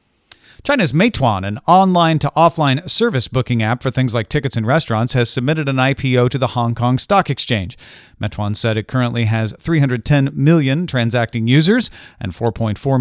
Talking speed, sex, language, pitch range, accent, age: 155 wpm, male, English, 110-145 Hz, American, 40-59